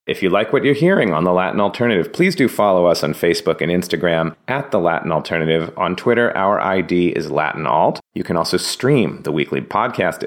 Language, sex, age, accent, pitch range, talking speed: English, male, 30-49, American, 80-100 Hz, 200 wpm